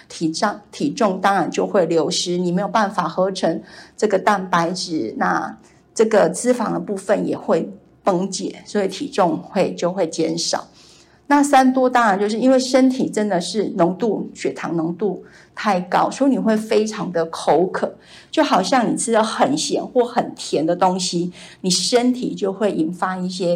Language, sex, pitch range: Chinese, female, 180-235 Hz